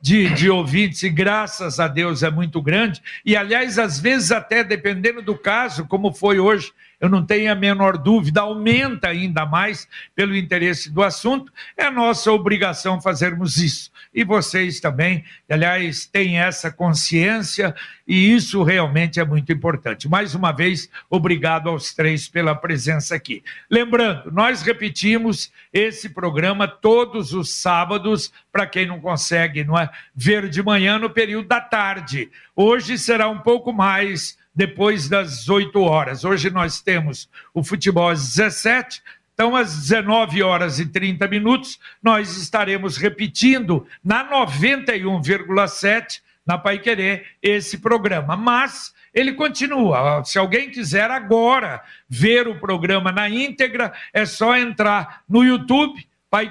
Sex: male